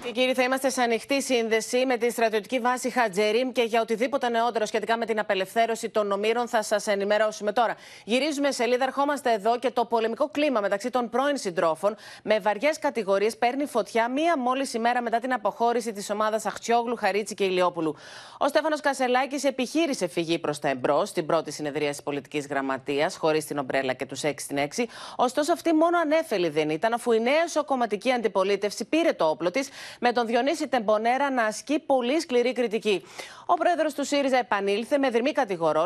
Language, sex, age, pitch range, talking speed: Greek, female, 30-49, 195-255 Hz, 175 wpm